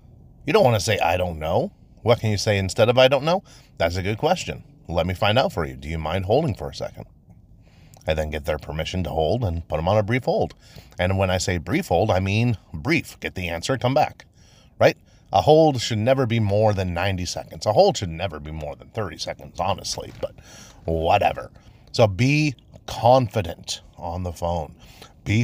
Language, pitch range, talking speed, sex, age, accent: English, 85-115 Hz, 210 wpm, male, 30-49, American